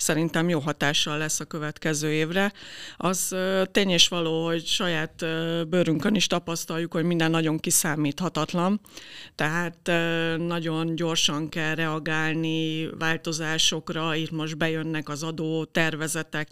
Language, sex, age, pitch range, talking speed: Hungarian, female, 50-69, 160-175 Hz, 115 wpm